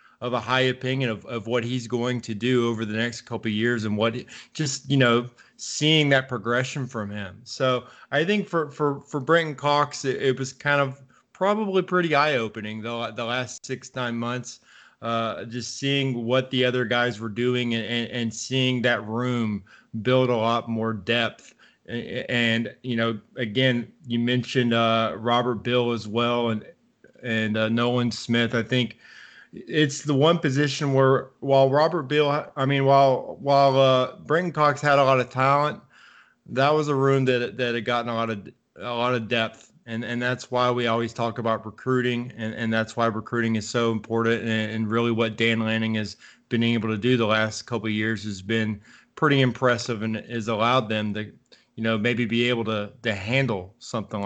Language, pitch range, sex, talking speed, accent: English, 115-130 Hz, male, 190 wpm, American